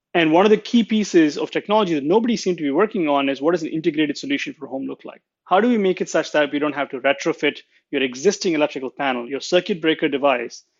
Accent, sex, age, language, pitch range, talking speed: Indian, male, 30-49, English, 140-180 Hz, 255 wpm